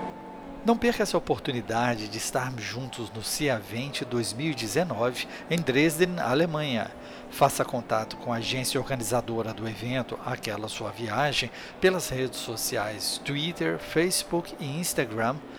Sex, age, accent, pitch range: male, 60-79, Brazilian, 115-150 Hz